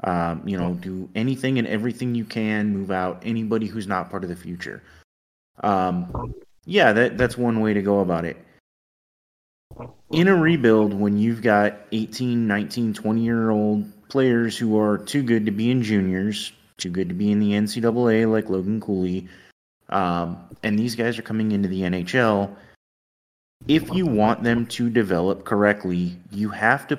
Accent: American